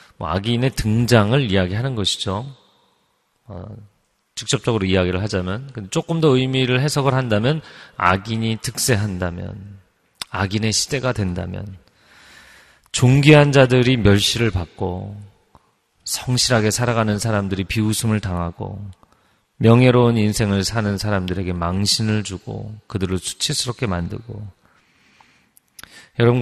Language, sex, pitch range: Korean, male, 95-125 Hz